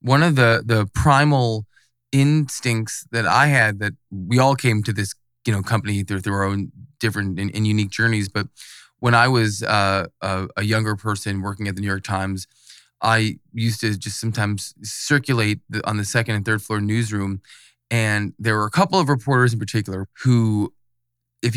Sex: male